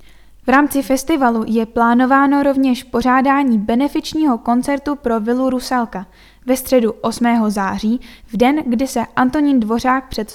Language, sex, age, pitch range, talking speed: Czech, female, 10-29, 230-270 Hz, 135 wpm